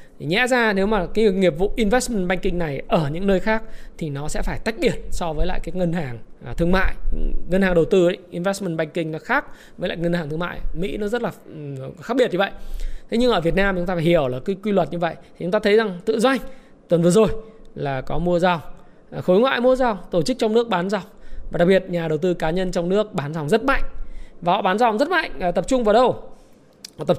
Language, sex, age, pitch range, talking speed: Vietnamese, male, 20-39, 165-215 Hz, 255 wpm